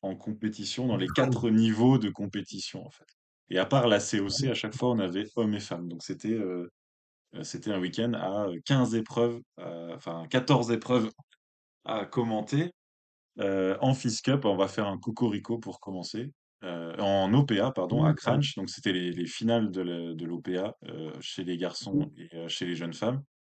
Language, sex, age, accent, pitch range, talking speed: French, male, 20-39, French, 90-115 Hz, 190 wpm